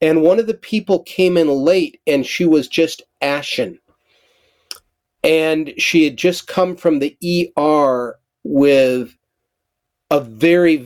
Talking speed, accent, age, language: 135 wpm, American, 40-59, English